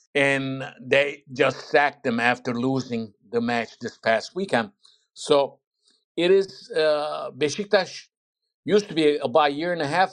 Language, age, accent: English, 60-79, American